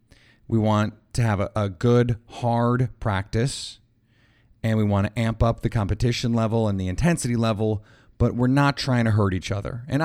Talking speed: 180 wpm